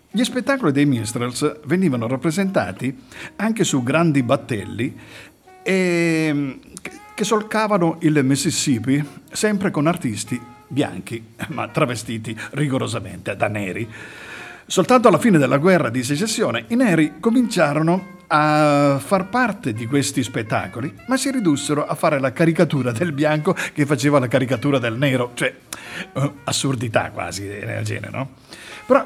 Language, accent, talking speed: Italian, native, 125 wpm